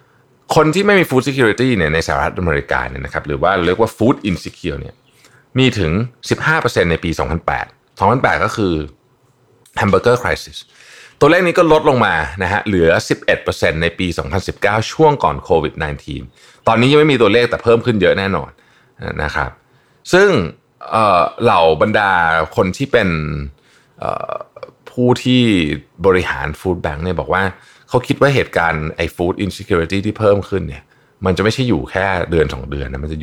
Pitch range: 80-120 Hz